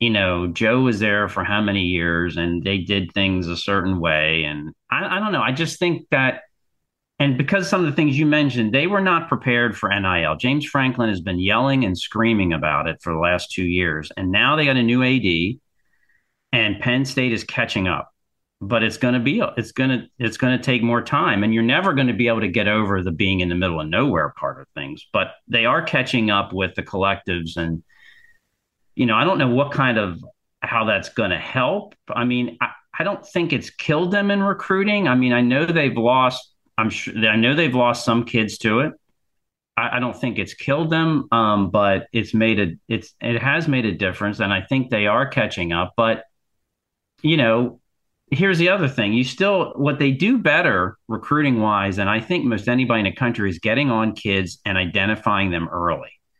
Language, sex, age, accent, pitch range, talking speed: English, male, 40-59, American, 100-135 Hz, 220 wpm